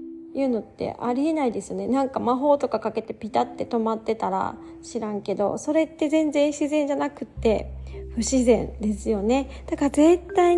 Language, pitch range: Japanese, 215-290 Hz